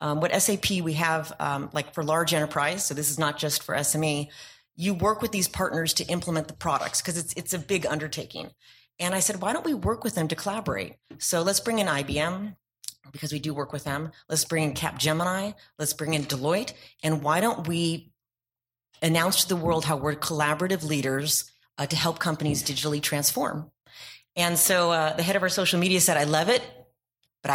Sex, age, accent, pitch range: female, 30-49, American, 145-170 Hz